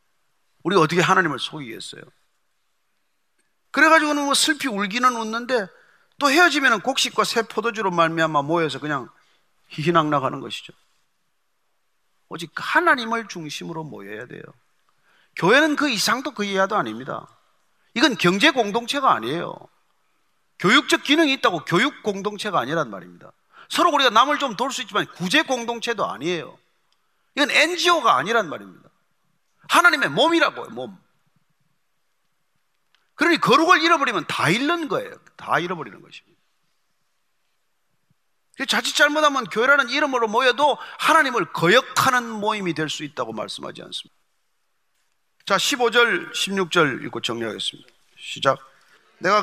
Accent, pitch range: native, 185-280 Hz